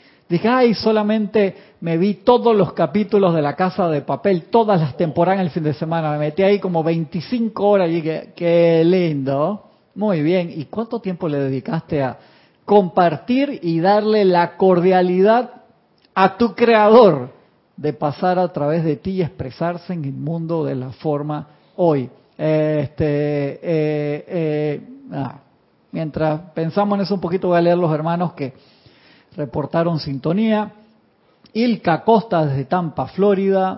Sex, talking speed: male, 150 wpm